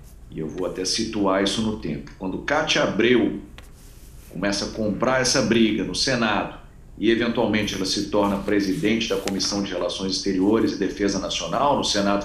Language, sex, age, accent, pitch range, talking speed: Portuguese, male, 40-59, Brazilian, 95-120 Hz, 165 wpm